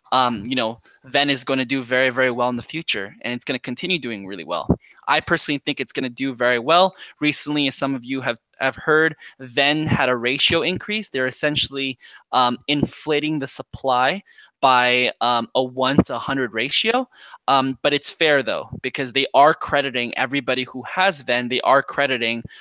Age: 20-39